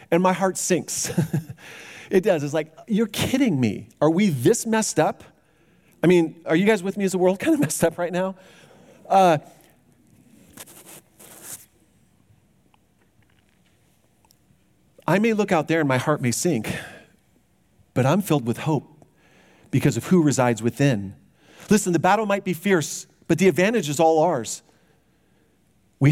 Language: English